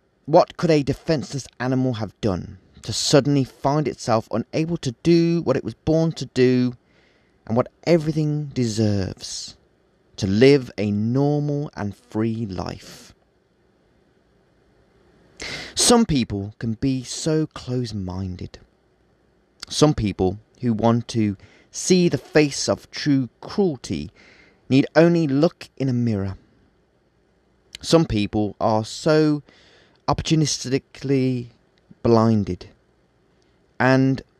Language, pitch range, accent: English, 105-145 Hz, British